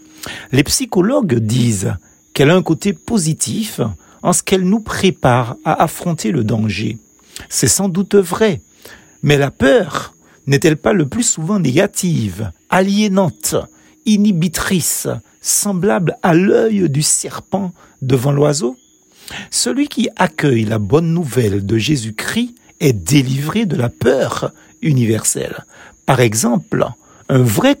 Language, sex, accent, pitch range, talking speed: French, male, French, 120-200 Hz, 125 wpm